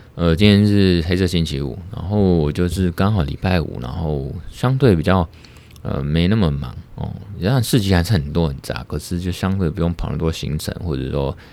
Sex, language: male, Chinese